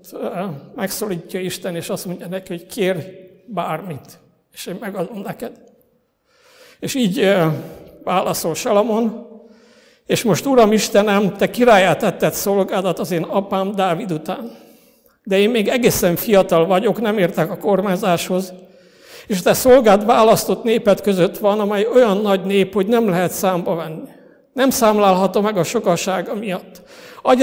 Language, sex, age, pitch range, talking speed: Hungarian, male, 60-79, 180-220 Hz, 140 wpm